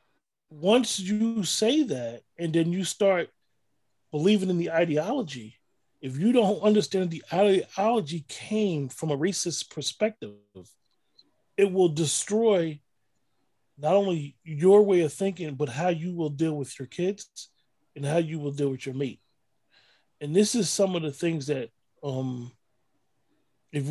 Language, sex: English, male